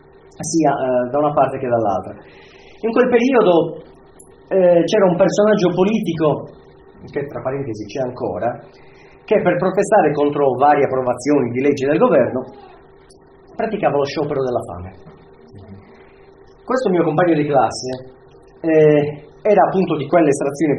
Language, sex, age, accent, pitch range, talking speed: Italian, male, 30-49, native, 125-175 Hz, 130 wpm